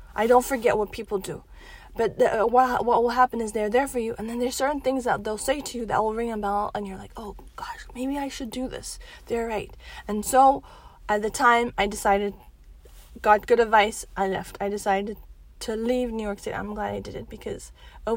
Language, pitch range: English, 210-255 Hz